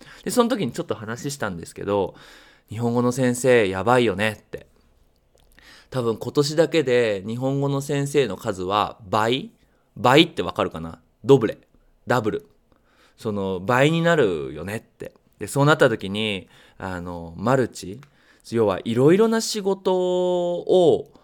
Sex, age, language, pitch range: male, 20-39, Japanese, 100-145 Hz